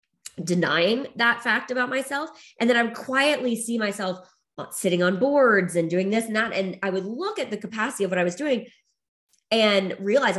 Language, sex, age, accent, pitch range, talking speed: English, female, 20-39, American, 170-215 Hz, 195 wpm